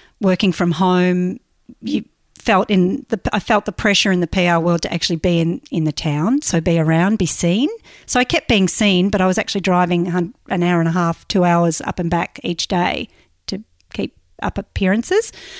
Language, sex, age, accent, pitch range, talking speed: English, female, 40-59, Australian, 180-245 Hz, 205 wpm